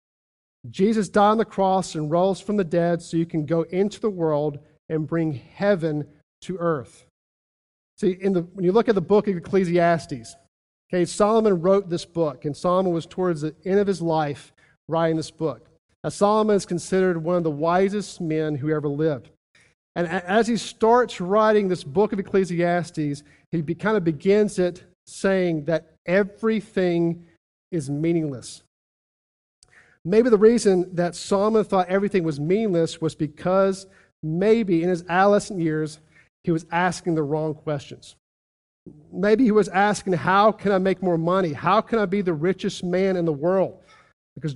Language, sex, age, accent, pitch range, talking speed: English, male, 50-69, American, 160-195 Hz, 170 wpm